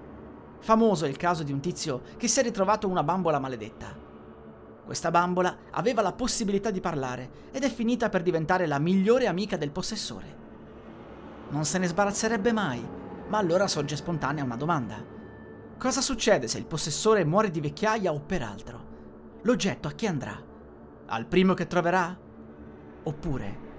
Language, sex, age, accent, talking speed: Italian, male, 30-49, native, 155 wpm